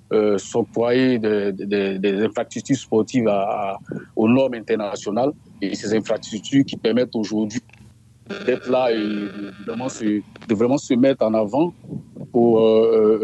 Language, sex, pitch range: French, male, 110-135 Hz